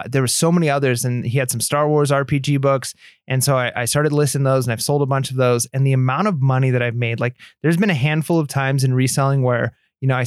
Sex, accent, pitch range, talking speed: male, American, 130-150 Hz, 280 wpm